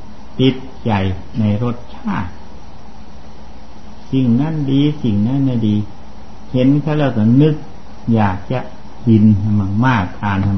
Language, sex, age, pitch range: Thai, male, 60-79, 105-130 Hz